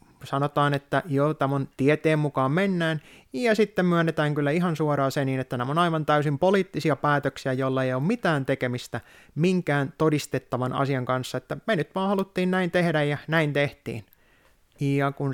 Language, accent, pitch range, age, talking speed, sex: Finnish, native, 130-165 Hz, 20-39, 170 wpm, male